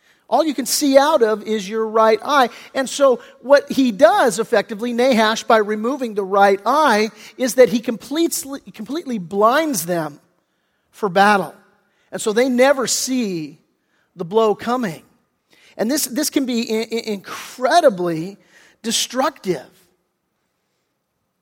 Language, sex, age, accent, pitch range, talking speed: English, male, 40-59, American, 185-245 Hz, 125 wpm